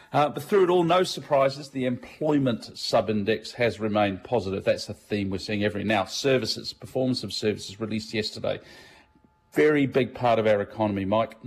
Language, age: English, 40-59